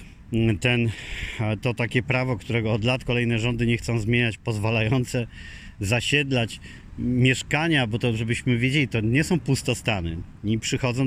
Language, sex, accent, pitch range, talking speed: Polish, male, native, 110-130 Hz, 125 wpm